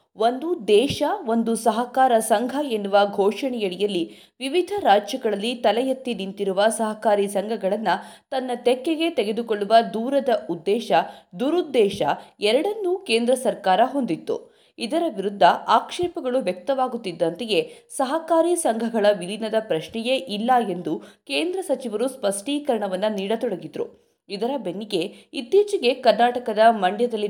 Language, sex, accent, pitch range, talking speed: Kannada, female, native, 205-270 Hz, 95 wpm